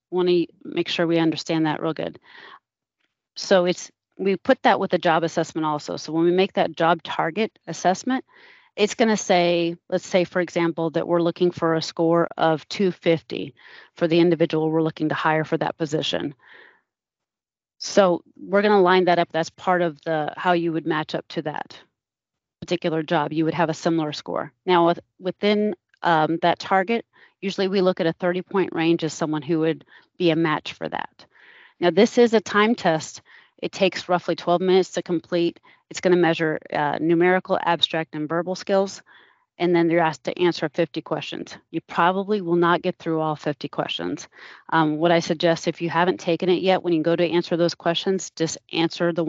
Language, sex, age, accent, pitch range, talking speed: English, female, 30-49, American, 160-180 Hz, 195 wpm